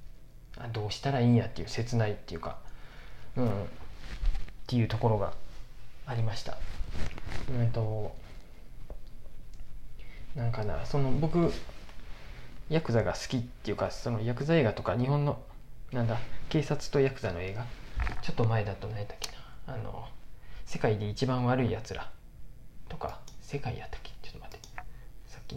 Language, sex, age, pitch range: Japanese, male, 20-39, 105-130 Hz